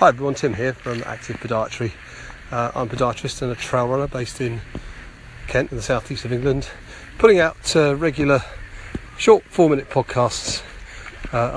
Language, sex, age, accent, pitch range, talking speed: English, male, 30-49, British, 115-135 Hz, 160 wpm